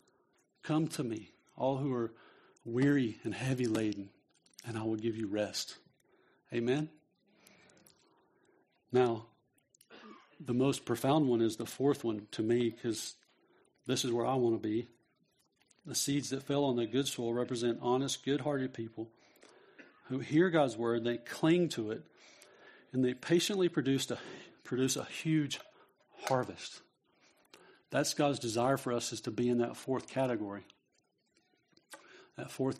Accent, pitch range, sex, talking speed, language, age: American, 115-140 Hz, male, 145 wpm, English, 50-69